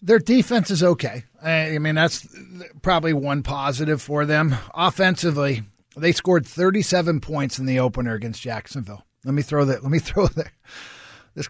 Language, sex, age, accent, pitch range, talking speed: English, male, 50-69, American, 120-155 Hz, 160 wpm